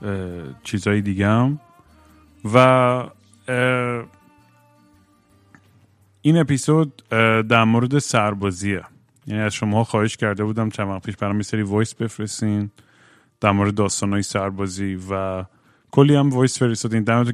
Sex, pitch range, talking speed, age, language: male, 100-120 Hz, 115 wpm, 30-49, Persian